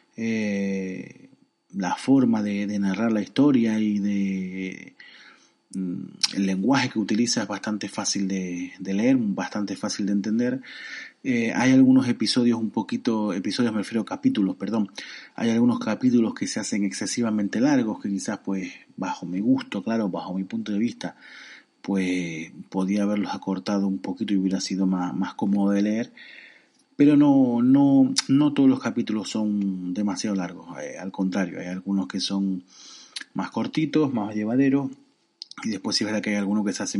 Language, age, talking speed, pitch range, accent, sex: Spanish, 30-49, 165 wpm, 95-125 Hz, Argentinian, male